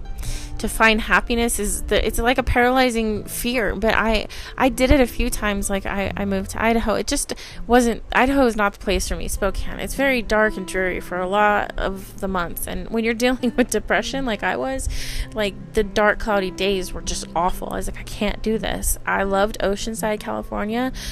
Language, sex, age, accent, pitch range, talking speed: English, female, 20-39, American, 190-225 Hz, 210 wpm